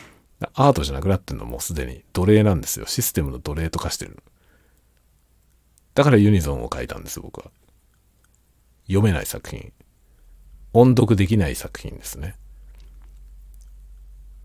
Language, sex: Japanese, male